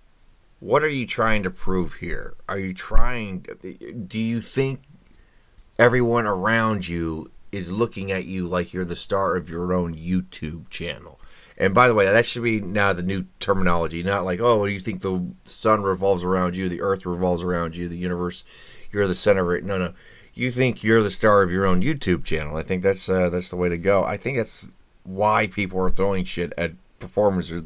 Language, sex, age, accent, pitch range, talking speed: English, male, 30-49, American, 85-105 Hz, 205 wpm